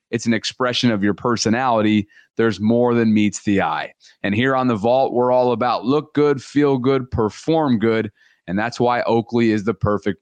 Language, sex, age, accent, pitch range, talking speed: English, male, 30-49, American, 110-135 Hz, 195 wpm